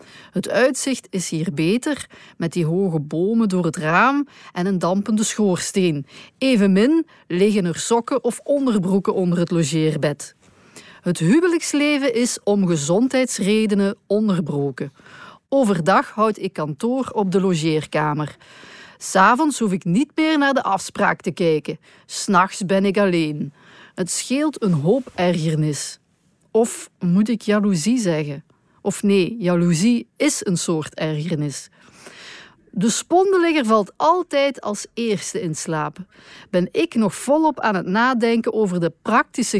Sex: female